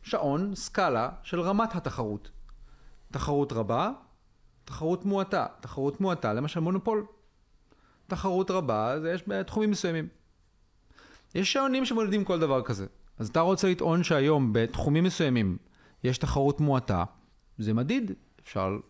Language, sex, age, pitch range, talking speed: Hebrew, male, 40-59, 120-175 Hz, 120 wpm